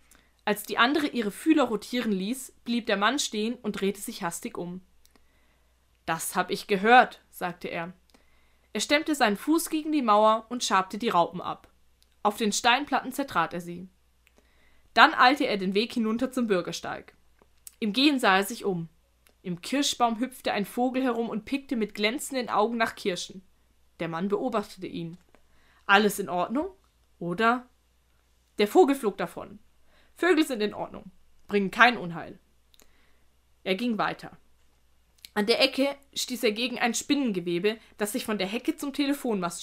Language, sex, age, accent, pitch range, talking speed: German, female, 20-39, German, 175-245 Hz, 155 wpm